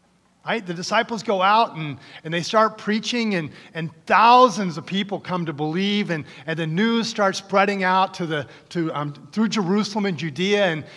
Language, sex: English, male